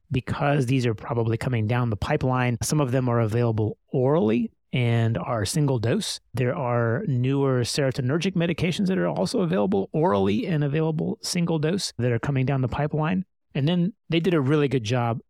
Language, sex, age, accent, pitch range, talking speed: Hebrew, male, 30-49, American, 115-145 Hz, 180 wpm